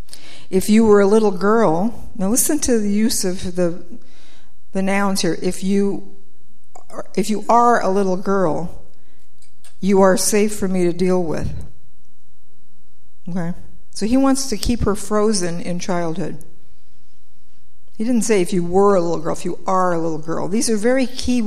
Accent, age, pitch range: American, 50-69, 175-215 Hz